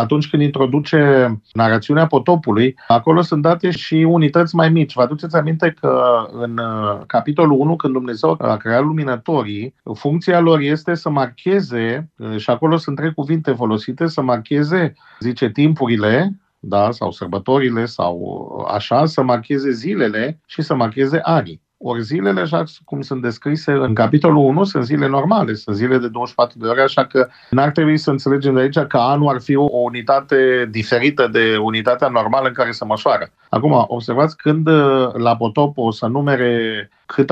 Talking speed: 160 wpm